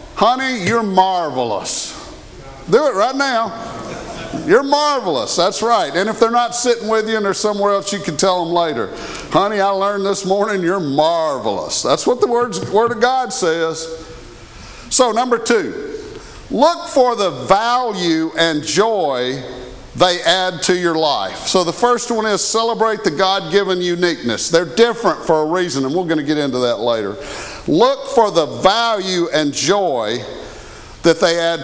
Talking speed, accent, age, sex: 165 wpm, American, 50-69, male